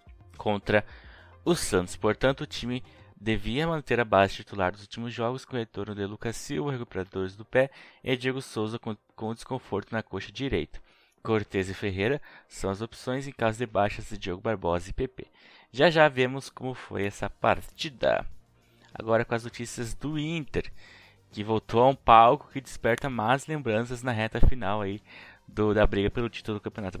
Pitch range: 100-125 Hz